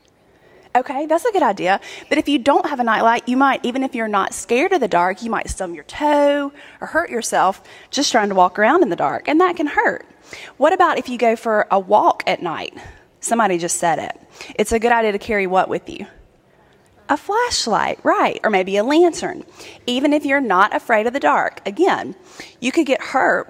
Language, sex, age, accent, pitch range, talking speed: English, female, 20-39, American, 200-300 Hz, 215 wpm